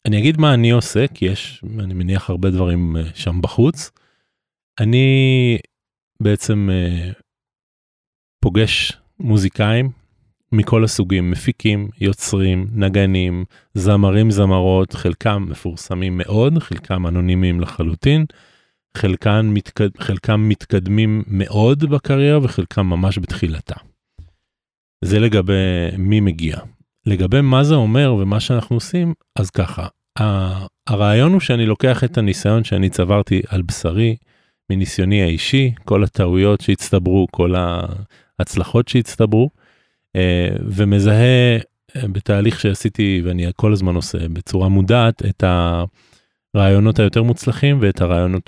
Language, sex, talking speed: Hebrew, male, 105 wpm